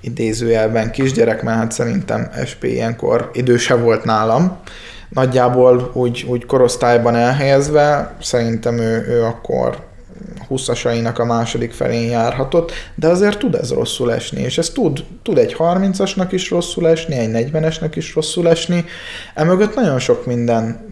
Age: 20-39